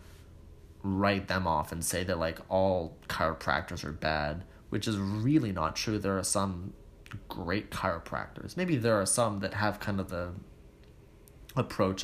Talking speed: 155 wpm